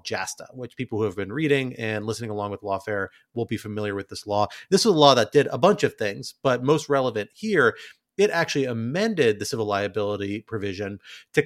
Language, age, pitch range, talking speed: English, 30-49, 105-140 Hz, 210 wpm